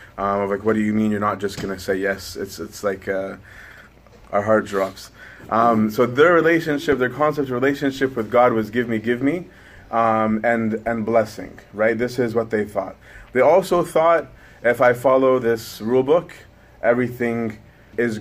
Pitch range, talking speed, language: 105-125 Hz, 185 wpm, English